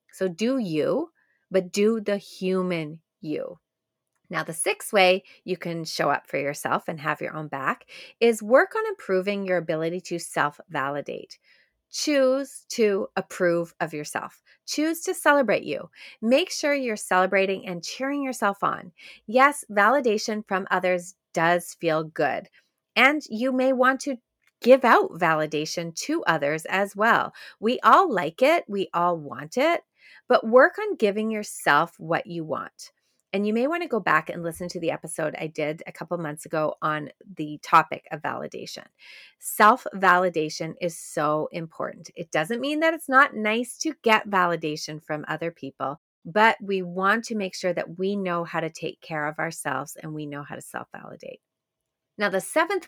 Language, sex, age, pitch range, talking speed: English, female, 30-49, 165-230 Hz, 165 wpm